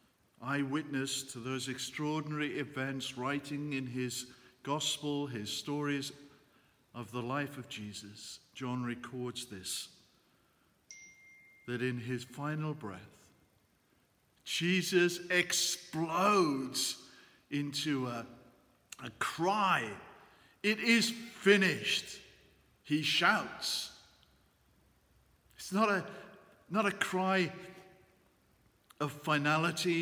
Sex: male